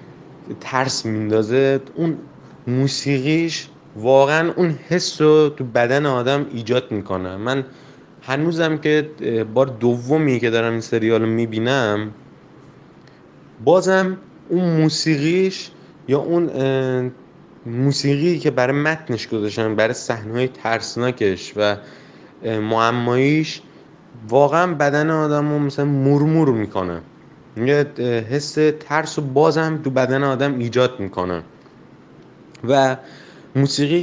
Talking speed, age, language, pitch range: 100 wpm, 20-39, Persian, 115-145 Hz